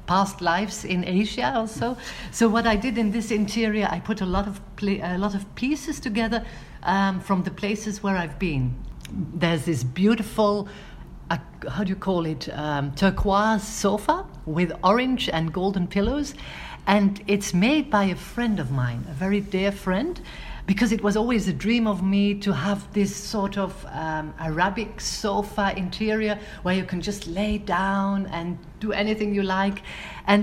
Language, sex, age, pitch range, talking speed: English, female, 50-69, 180-215 Hz, 175 wpm